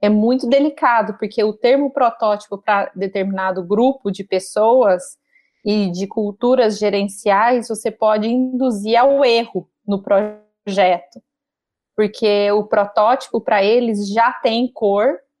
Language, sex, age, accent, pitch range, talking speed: Portuguese, female, 30-49, Brazilian, 200-240 Hz, 120 wpm